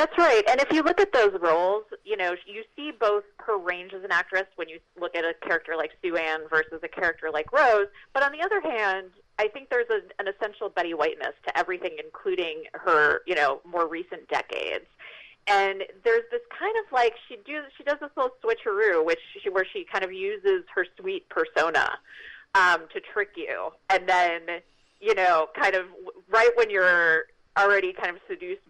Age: 30-49